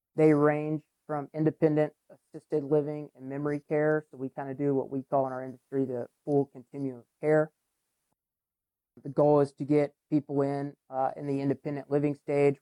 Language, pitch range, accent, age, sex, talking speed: English, 130-150 Hz, American, 30-49, male, 180 wpm